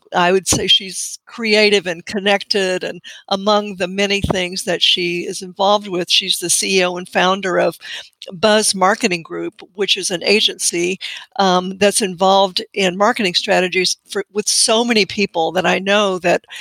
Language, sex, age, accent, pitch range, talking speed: English, female, 60-79, American, 185-230 Hz, 160 wpm